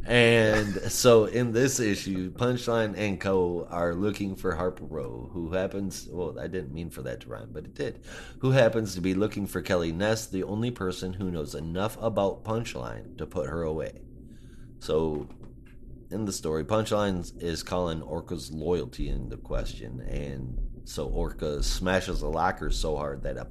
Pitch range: 80-105 Hz